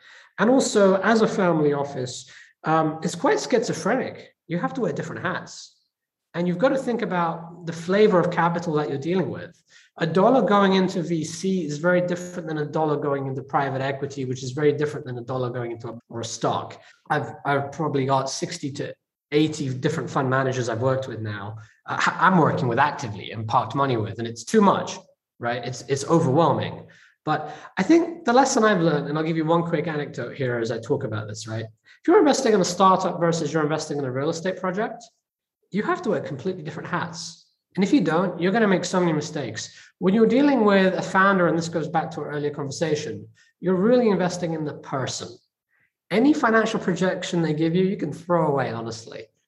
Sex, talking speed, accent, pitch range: male, 210 wpm, British, 135-185 Hz